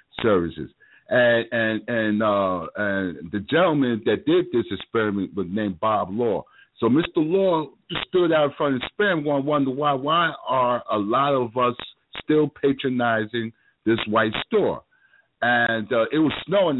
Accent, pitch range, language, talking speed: American, 110-175 Hz, English, 165 wpm